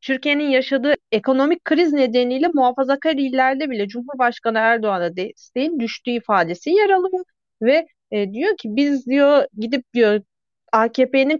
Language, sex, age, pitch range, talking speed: Turkish, female, 30-49, 225-285 Hz, 125 wpm